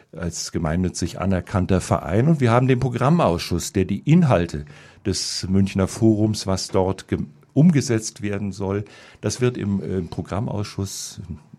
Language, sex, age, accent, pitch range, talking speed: German, male, 50-69, German, 100-125 Hz, 130 wpm